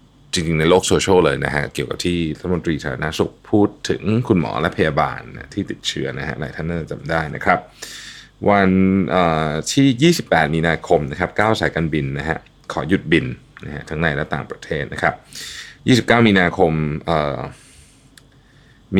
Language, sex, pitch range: Thai, male, 80-120 Hz